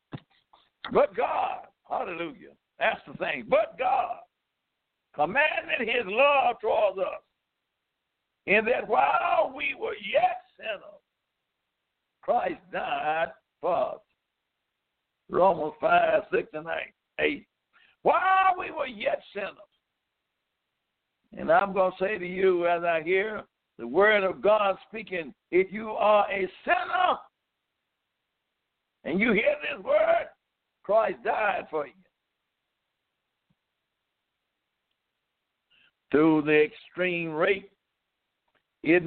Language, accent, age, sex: English, American, 60-79, male